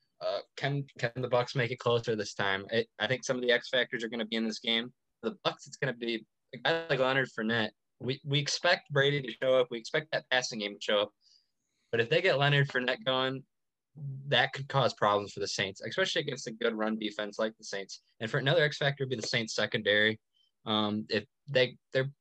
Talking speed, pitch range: 240 wpm, 110-140 Hz